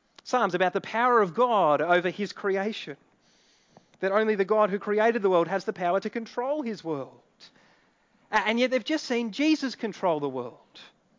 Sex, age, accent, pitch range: male, 30-49, Australian, 175-235 Hz